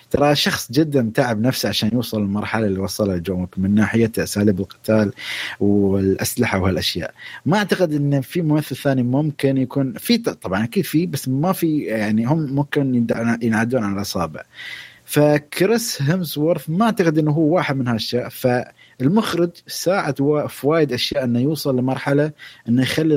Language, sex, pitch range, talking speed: Arabic, male, 120-155 Hz, 150 wpm